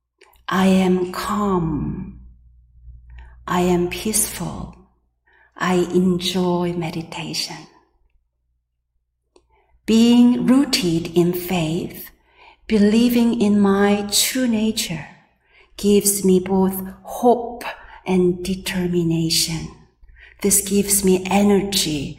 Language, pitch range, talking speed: English, 165-210 Hz, 75 wpm